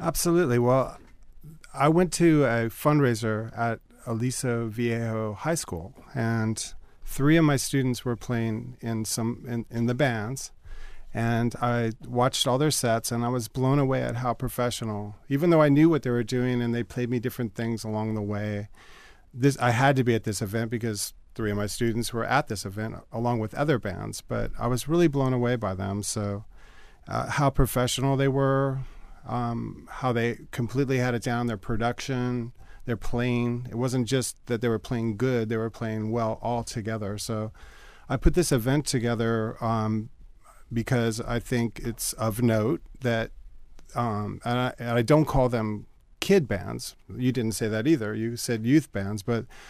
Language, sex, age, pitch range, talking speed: English, male, 40-59, 110-130 Hz, 180 wpm